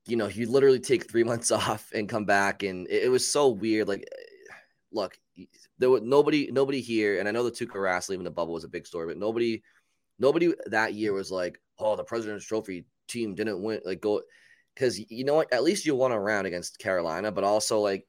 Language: English